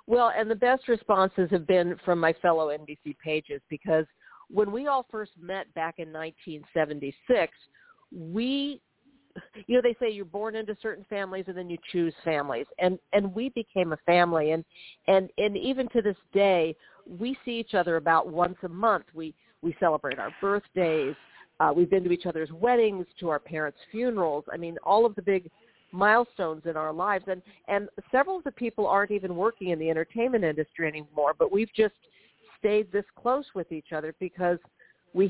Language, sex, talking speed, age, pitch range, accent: English, female, 185 wpm, 50-69, 165-215 Hz, American